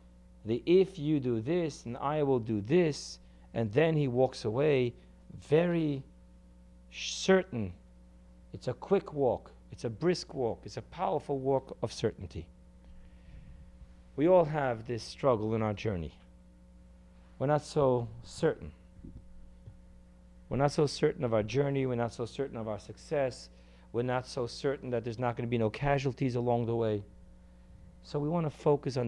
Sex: male